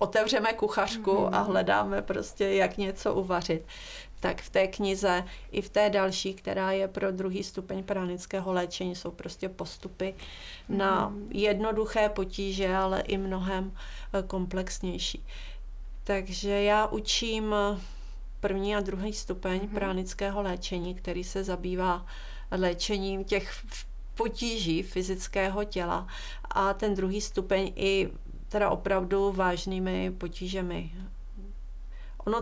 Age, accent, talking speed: 40-59, native, 110 wpm